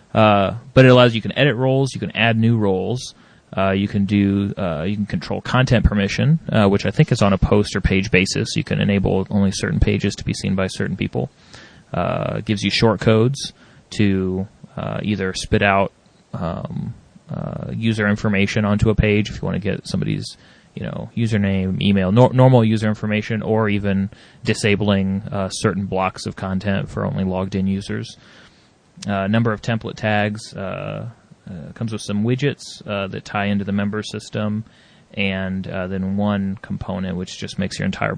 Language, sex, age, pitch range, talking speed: English, male, 30-49, 95-115 Hz, 185 wpm